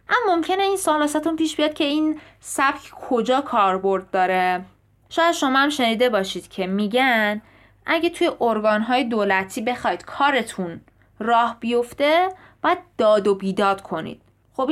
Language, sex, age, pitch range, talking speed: Persian, female, 20-39, 205-285 Hz, 135 wpm